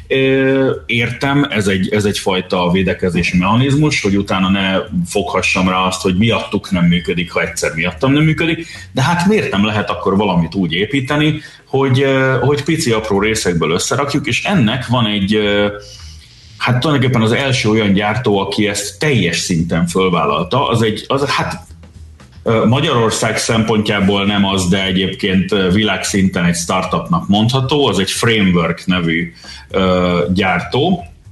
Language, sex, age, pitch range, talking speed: Hungarian, male, 30-49, 95-130 Hz, 135 wpm